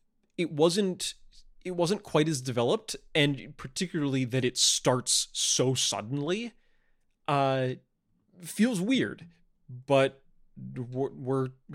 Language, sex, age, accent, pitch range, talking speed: English, male, 30-49, American, 110-150 Hz, 95 wpm